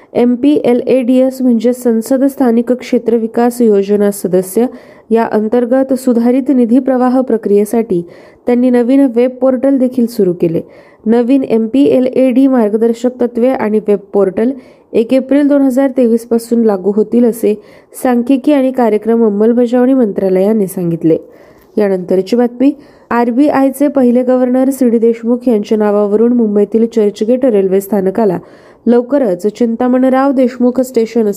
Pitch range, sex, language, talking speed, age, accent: 210-255 Hz, female, Marathi, 120 wpm, 20-39, native